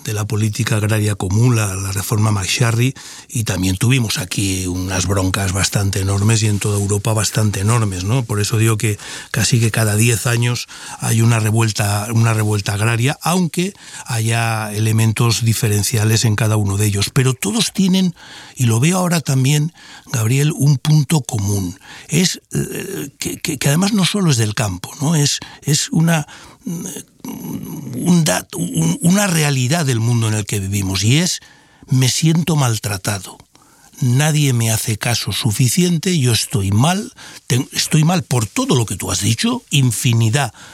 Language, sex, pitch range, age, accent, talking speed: Spanish, male, 105-140 Hz, 60-79, Spanish, 155 wpm